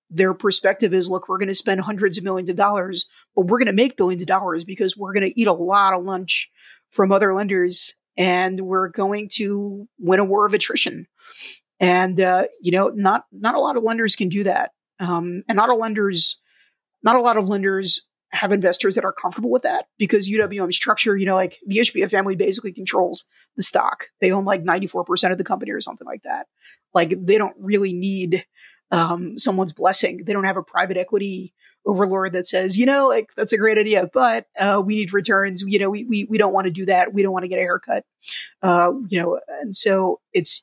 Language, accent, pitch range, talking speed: English, American, 185-210 Hz, 220 wpm